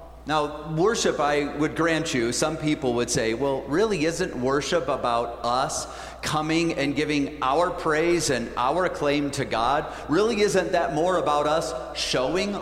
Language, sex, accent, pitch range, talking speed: English, male, American, 135-185 Hz, 155 wpm